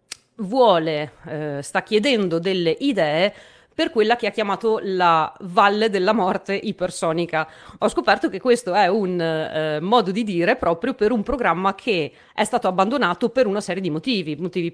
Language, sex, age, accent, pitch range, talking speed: Italian, female, 30-49, native, 170-215 Hz, 165 wpm